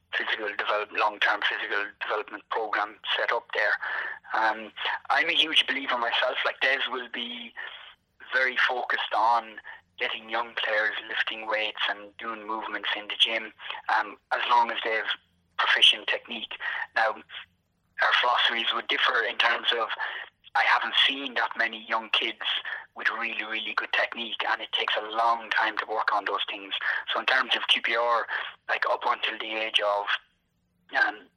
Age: 30-49